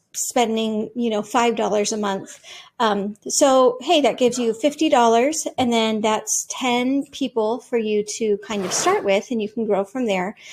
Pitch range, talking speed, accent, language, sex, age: 215-270 Hz, 175 wpm, American, English, female, 40-59